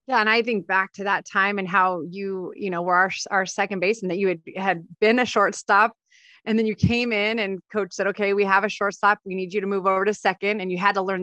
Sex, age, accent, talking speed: female, 30-49, American, 280 wpm